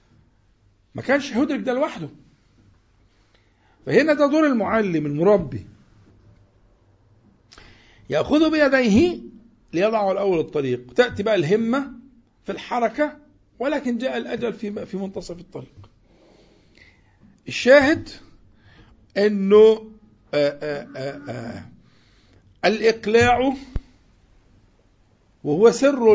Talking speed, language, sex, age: 80 wpm, Arabic, male, 50-69